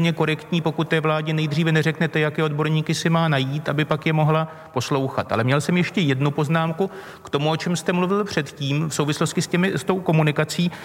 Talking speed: 200 wpm